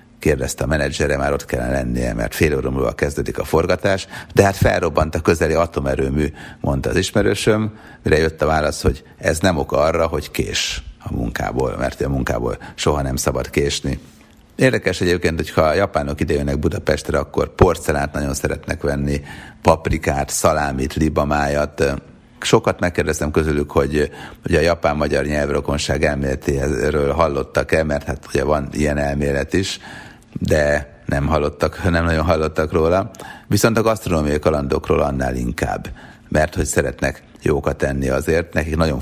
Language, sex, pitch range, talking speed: Hungarian, male, 70-85 Hz, 150 wpm